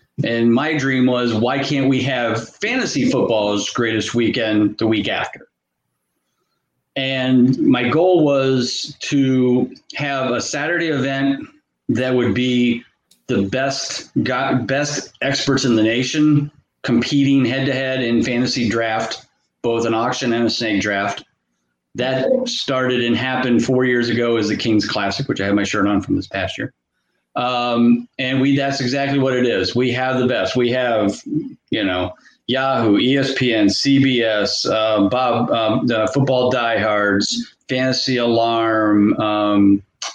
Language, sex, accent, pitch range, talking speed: English, male, American, 115-135 Hz, 140 wpm